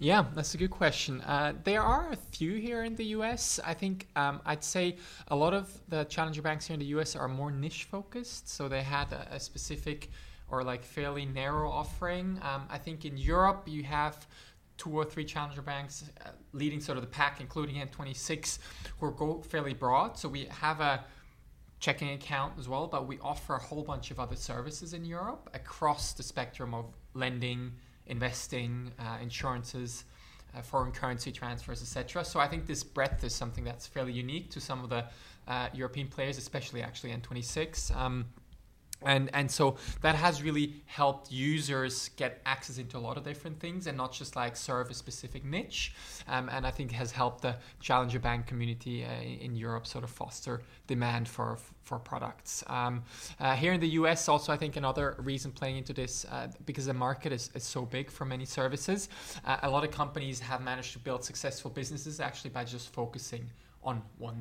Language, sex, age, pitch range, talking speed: English, male, 20-39, 125-150 Hz, 195 wpm